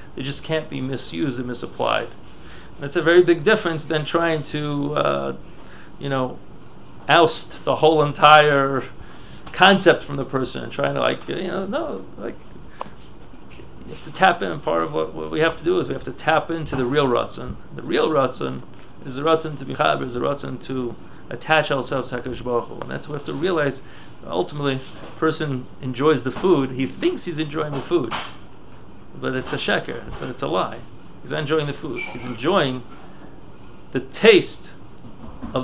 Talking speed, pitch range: 185 wpm, 125-160 Hz